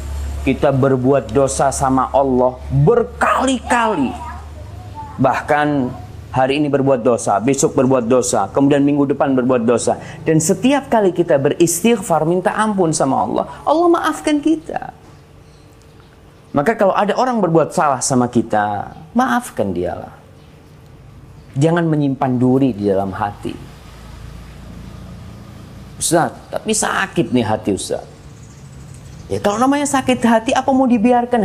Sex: male